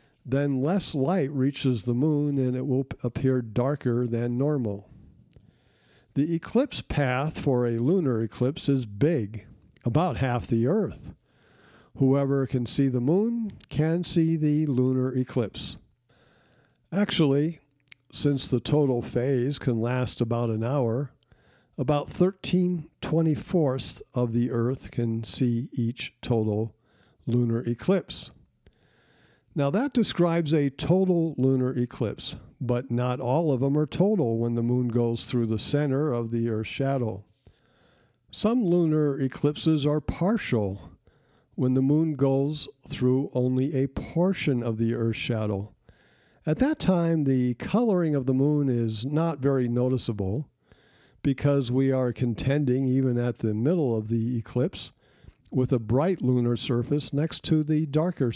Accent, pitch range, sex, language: American, 120-150 Hz, male, English